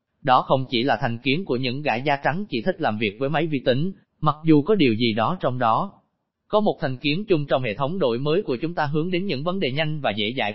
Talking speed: 280 wpm